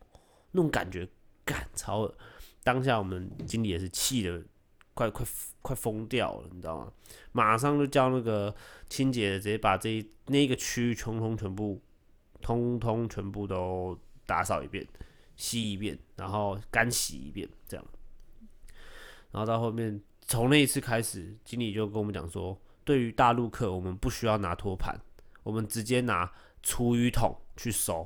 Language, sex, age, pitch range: Chinese, male, 20-39, 95-120 Hz